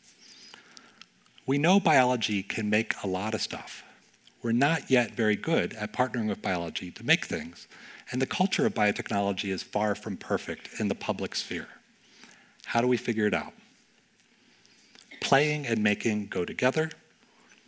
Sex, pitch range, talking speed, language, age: male, 100-145 Hz, 155 wpm, English, 40-59